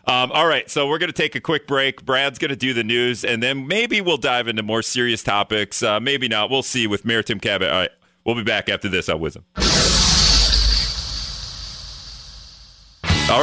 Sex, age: male, 40-59